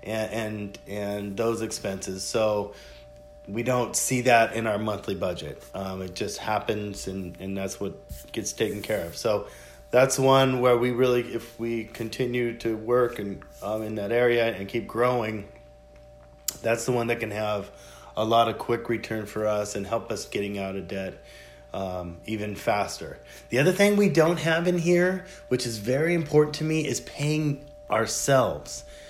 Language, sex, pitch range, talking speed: English, male, 110-150 Hz, 175 wpm